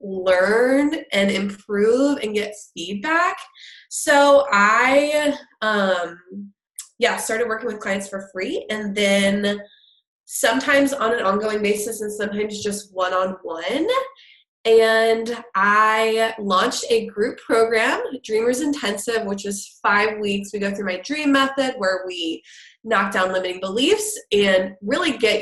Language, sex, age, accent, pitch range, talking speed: English, female, 20-39, American, 190-235 Hz, 125 wpm